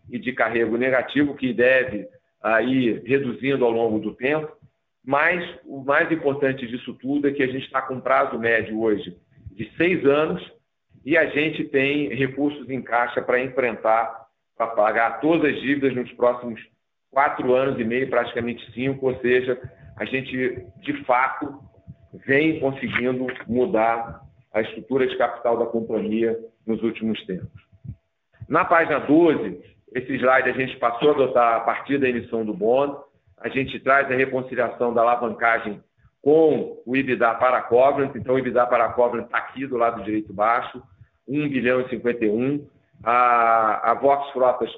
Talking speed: 160 wpm